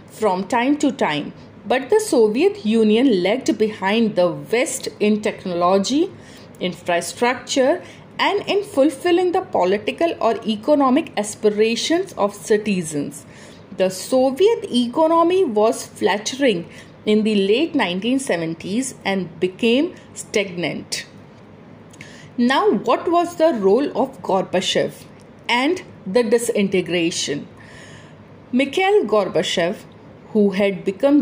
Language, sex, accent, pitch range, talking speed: English, female, Indian, 195-265 Hz, 100 wpm